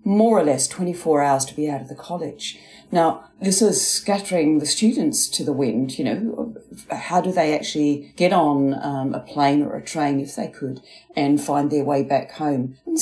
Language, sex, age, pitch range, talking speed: English, female, 40-59, 145-200 Hz, 205 wpm